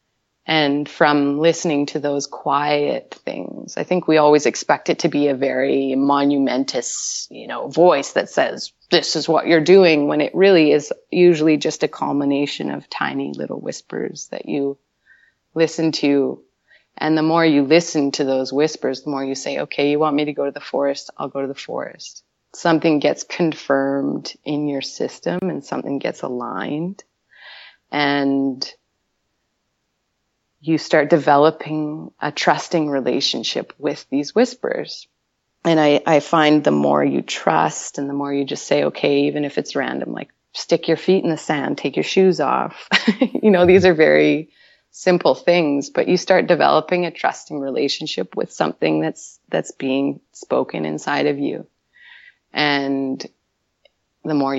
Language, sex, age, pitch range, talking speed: English, female, 30-49, 140-165 Hz, 160 wpm